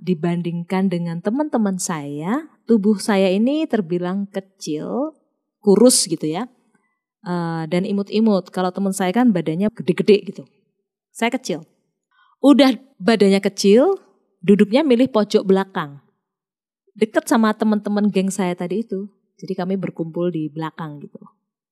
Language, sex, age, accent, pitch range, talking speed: Indonesian, female, 20-39, native, 185-255 Hz, 120 wpm